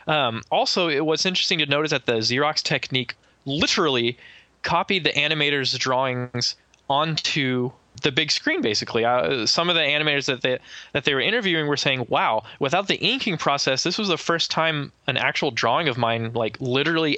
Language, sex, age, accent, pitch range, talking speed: English, male, 20-39, American, 120-150 Hz, 180 wpm